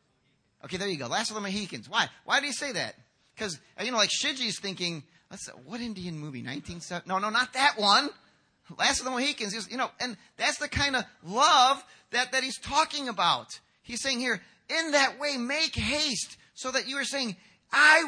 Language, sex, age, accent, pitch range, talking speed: English, male, 30-49, American, 185-255 Hz, 205 wpm